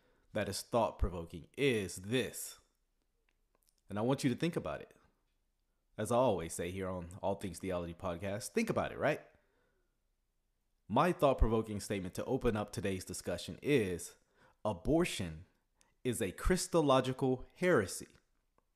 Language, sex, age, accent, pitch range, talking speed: English, male, 30-49, American, 105-140 Hz, 130 wpm